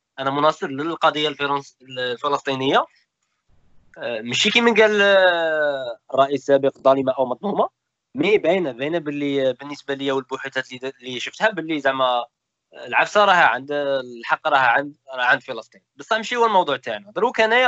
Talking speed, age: 130 wpm, 20-39